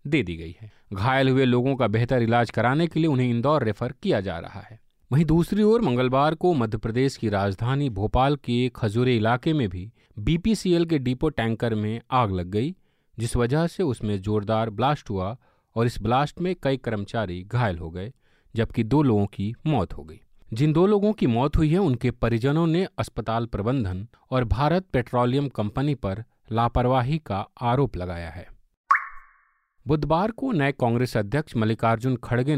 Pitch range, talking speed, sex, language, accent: 110-145 Hz, 175 wpm, male, Hindi, native